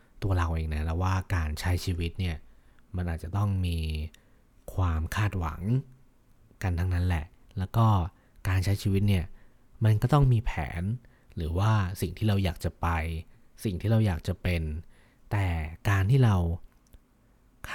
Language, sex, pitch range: Thai, male, 85-110 Hz